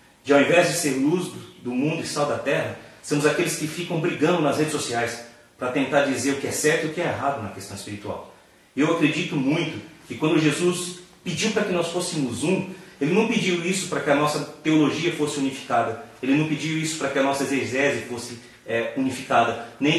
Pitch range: 125-155 Hz